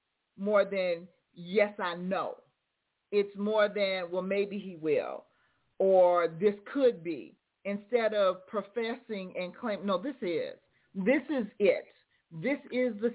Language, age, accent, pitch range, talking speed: English, 40-59, American, 185-245 Hz, 135 wpm